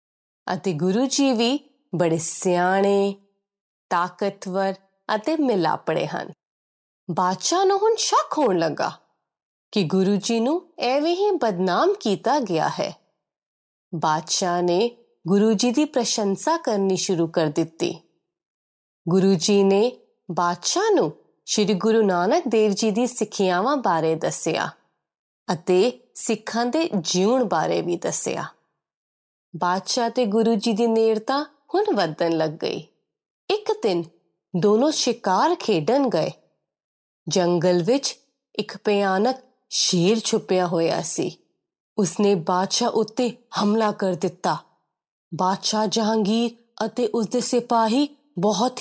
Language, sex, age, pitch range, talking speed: Punjabi, female, 20-39, 185-250 Hz, 115 wpm